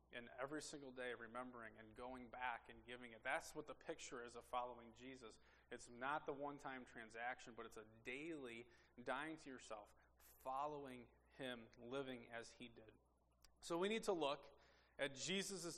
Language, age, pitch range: English, 20-39, 125-170 Hz